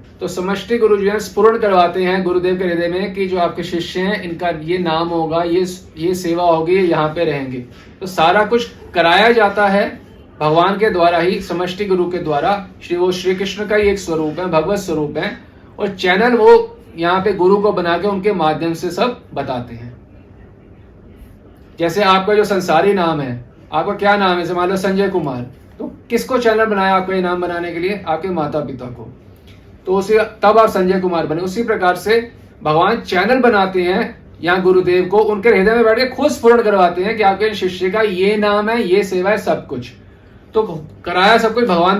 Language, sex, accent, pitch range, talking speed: Hindi, male, native, 155-205 Hz, 195 wpm